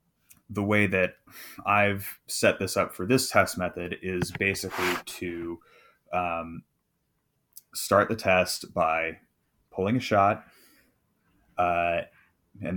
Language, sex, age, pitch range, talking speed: English, male, 20-39, 85-100 Hz, 115 wpm